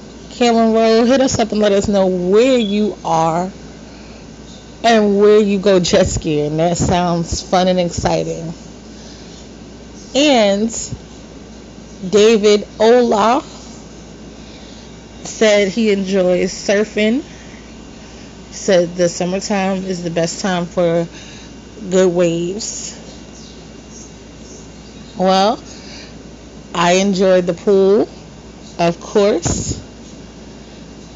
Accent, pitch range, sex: American, 175-220 Hz, female